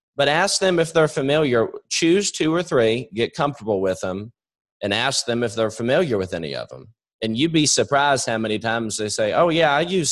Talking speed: 220 wpm